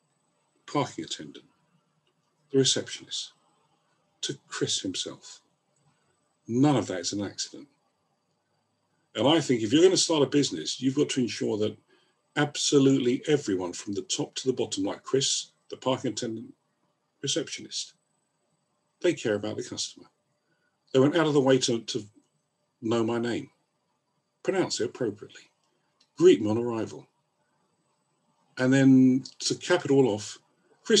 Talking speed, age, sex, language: 140 wpm, 50-69, male, English